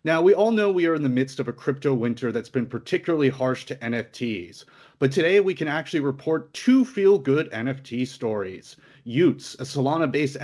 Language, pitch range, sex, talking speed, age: English, 125-155 Hz, male, 185 wpm, 30-49